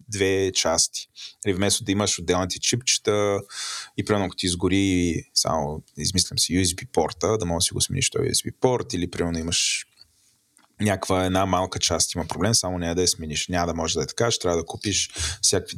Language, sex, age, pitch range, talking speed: Bulgarian, male, 20-39, 90-110 Hz, 200 wpm